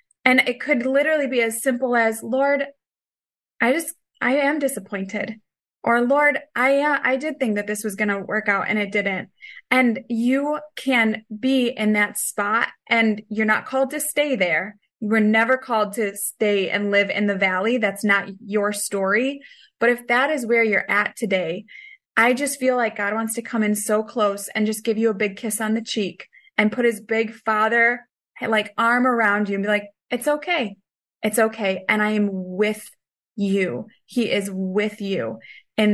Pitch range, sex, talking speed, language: 200-245 Hz, female, 190 wpm, English